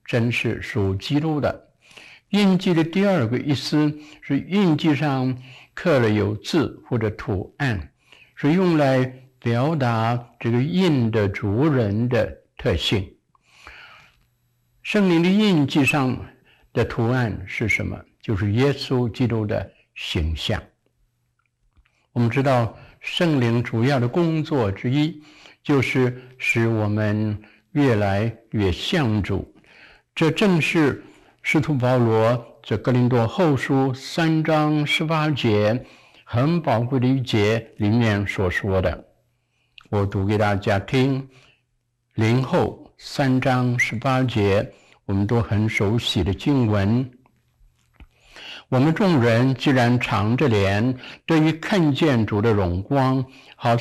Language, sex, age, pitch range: Chinese, male, 60-79, 110-145 Hz